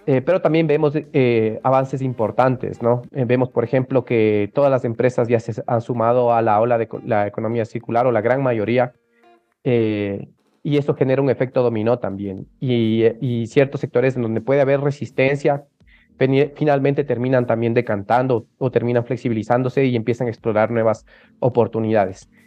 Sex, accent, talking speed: male, Mexican, 170 wpm